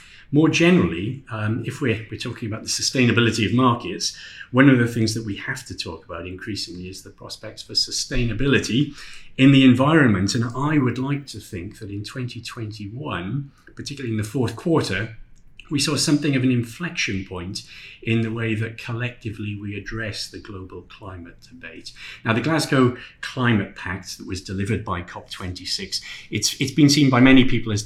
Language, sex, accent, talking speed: English, male, British, 175 wpm